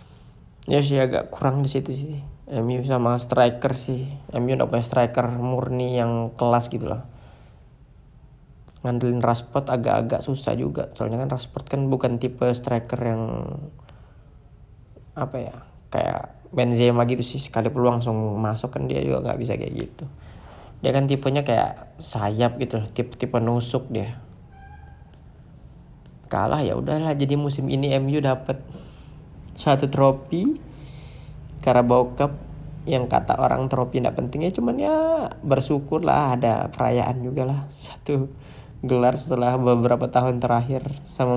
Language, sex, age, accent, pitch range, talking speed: Indonesian, male, 20-39, native, 120-140 Hz, 135 wpm